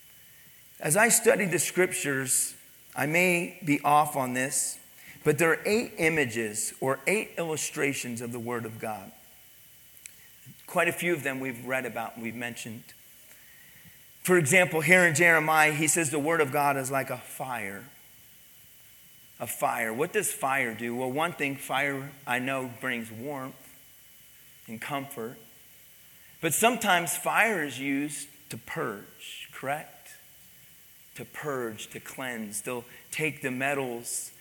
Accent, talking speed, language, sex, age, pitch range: American, 145 wpm, English, male, 40-59, 130-170 Hz